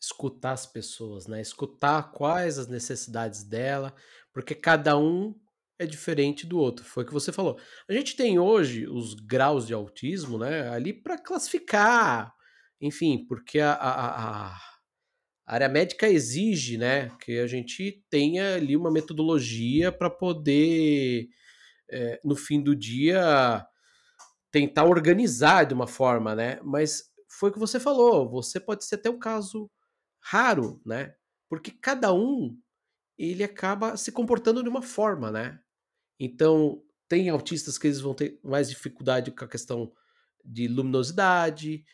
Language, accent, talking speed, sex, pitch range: Portuguese, Brazilian, 145 wpm, male, 130-195 Hz